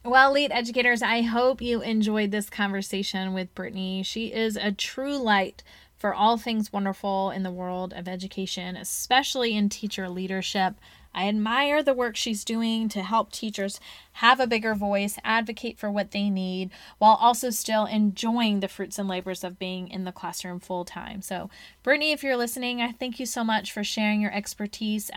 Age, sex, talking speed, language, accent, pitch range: 20-39, female, 180 wpm, English, American, 195-250 Hz